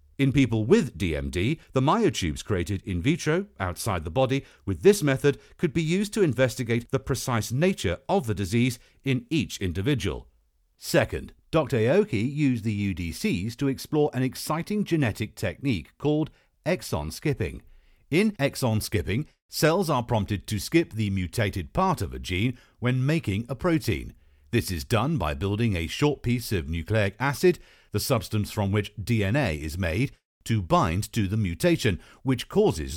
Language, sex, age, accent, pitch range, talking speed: English, male, 50-69, British, 95-145 Hz, 160 wpm